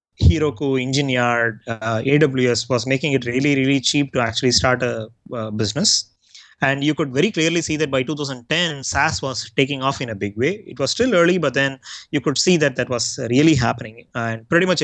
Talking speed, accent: 200 wpm, Indian